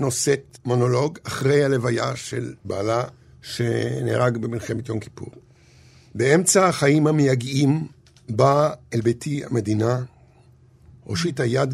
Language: Hebrew